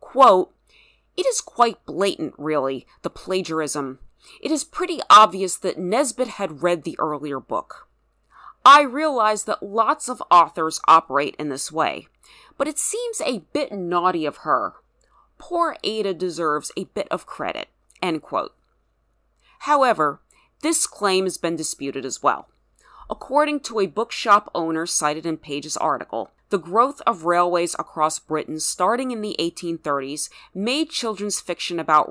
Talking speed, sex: 145 wpm, female